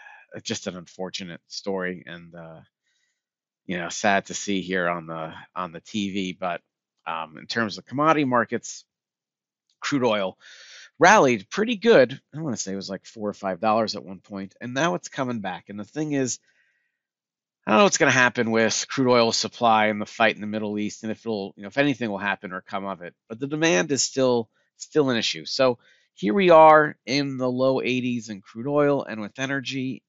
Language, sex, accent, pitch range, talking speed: English, male, American, 100-135 Hz, 210 wpm